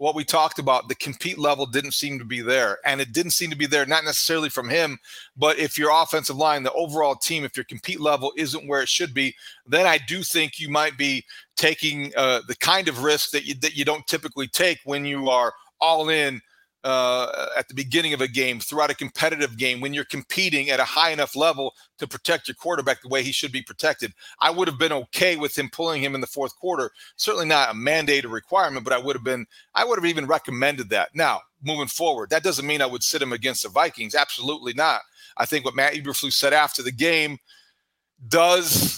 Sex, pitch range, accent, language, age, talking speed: male, 140-165 Hz, American, English, 40-59, 225 wpm